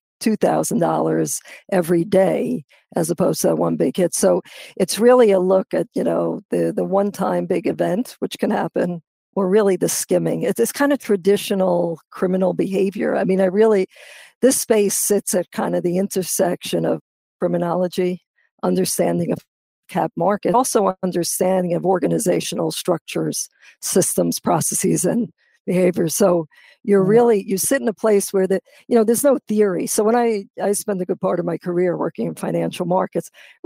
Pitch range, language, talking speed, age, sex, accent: 180-210 Hz, English, 165 wpm, 50-69, female, American